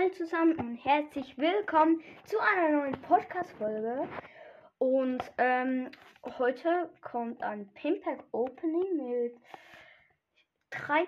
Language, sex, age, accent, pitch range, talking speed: German, female, 10-29, German, 230-330 Hz, 85 wpm